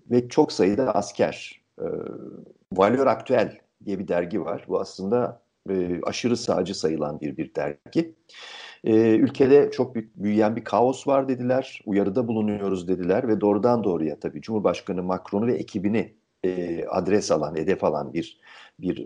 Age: 50-69